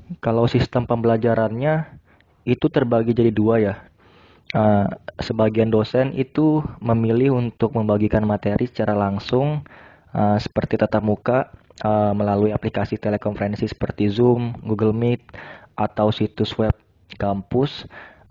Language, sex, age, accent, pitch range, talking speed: Indonesian, male, 20-39, native, 100-115 Hz, 100 wpm